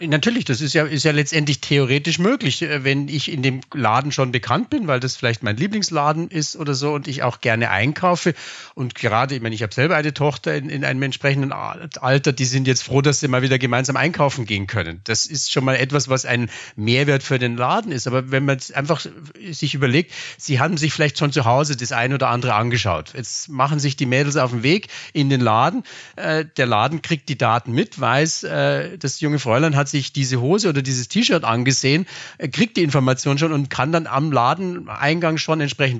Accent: German